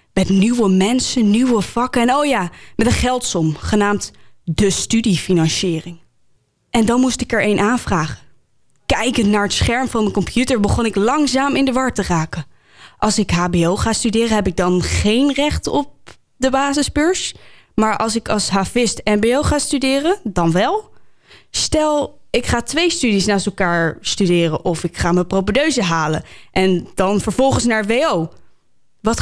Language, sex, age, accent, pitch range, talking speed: Dutch, female, 10-29, Dutch, 190-250 Hz, 160 wpm